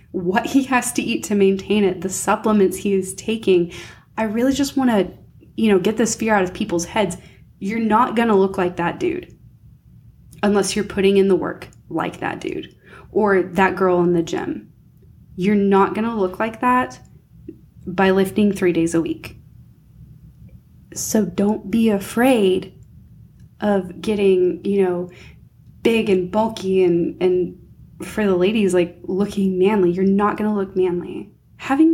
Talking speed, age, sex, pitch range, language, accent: 165 wpm, 20-39, female, 185-240 Hz, English, American